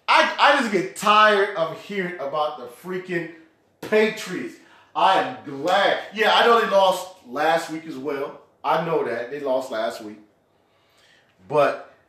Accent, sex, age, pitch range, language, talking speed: American, male, 30-49, 165-215 Hz, English, 155 wpm